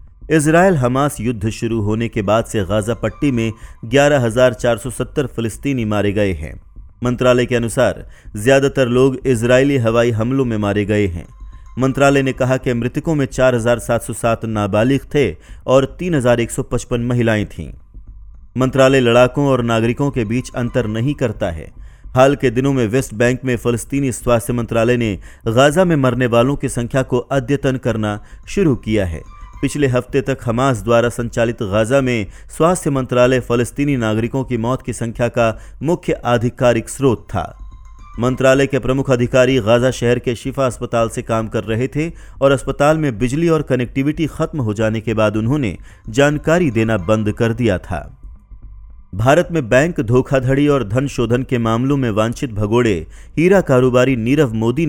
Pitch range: 115-135 Hz